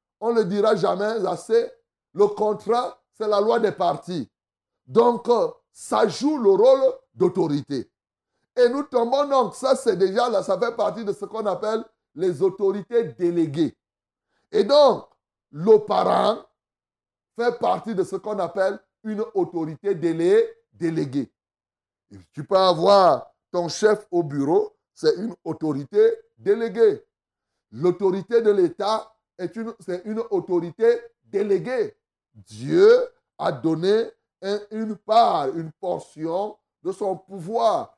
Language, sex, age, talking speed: French, male, 60-79, 130 wpm